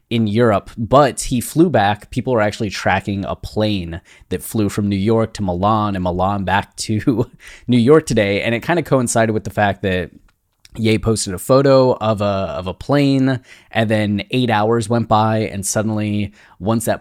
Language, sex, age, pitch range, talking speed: English, male, 20-39, 95-120 Hz, 185 wpm